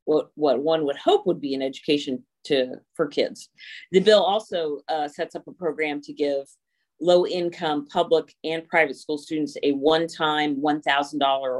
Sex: female